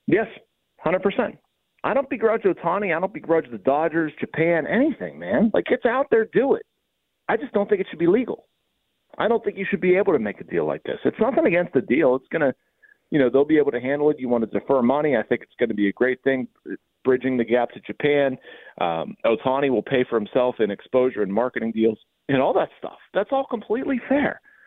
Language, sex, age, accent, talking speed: English, male, 40-59, American, 235 wpm